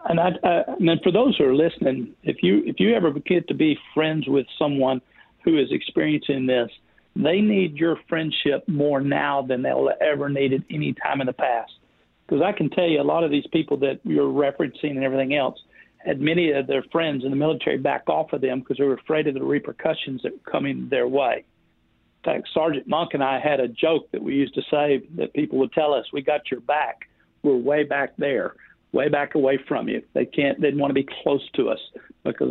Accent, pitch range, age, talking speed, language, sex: American, 135-160 Hz, 50-69, 225 wpm, English, male